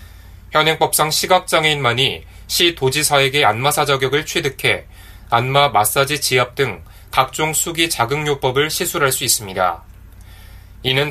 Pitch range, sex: 100-150 Hz, male